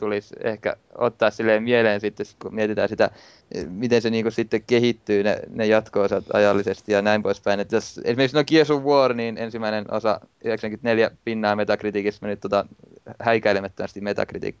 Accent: native